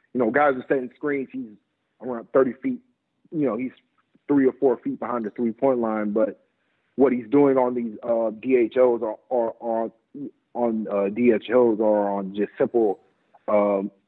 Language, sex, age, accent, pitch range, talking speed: English, male, 40-59, American, 110-140 Hz, 165 wpm